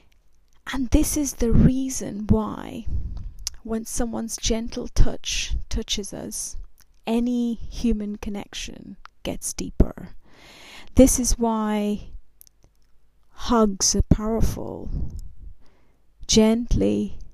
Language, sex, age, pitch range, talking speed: English, female, 30-49, 190-230 Hz, 85 wpm